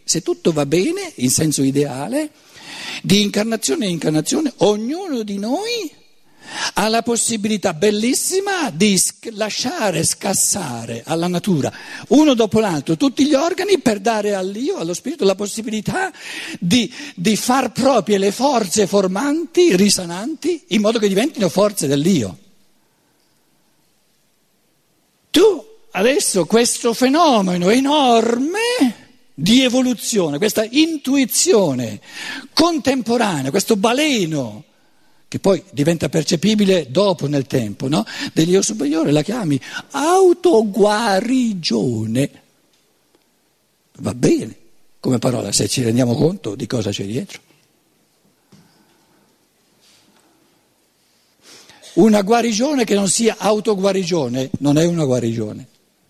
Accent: native